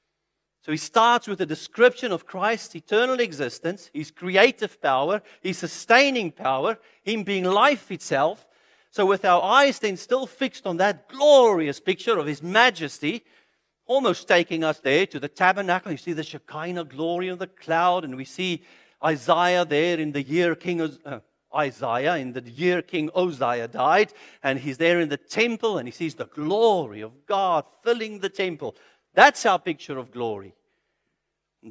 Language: English